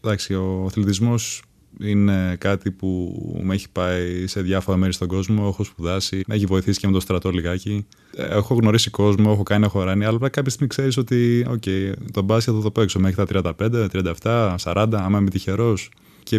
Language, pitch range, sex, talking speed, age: Greek, 95-120 Hz, male, 190 wpm, 20-39